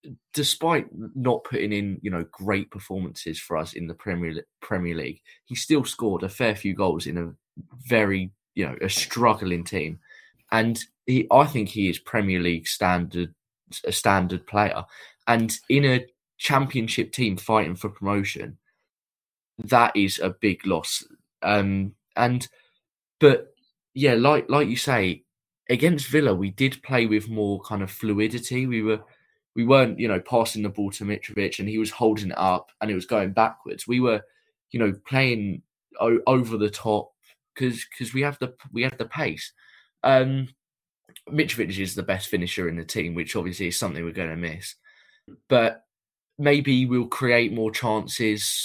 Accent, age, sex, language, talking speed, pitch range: British, 20-39, male, English, 170 wpm, 95-125 Hz